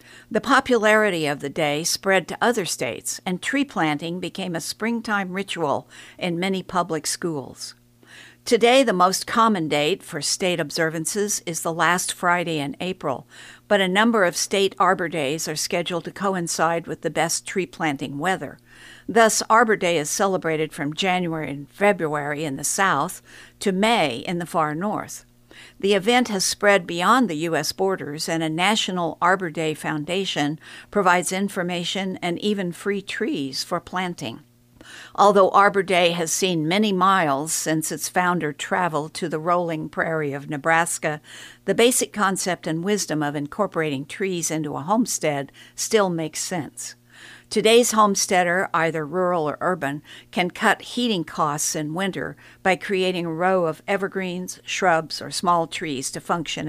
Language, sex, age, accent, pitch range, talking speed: English, female, 60-79, American, 155-195 Hz, 155 wpm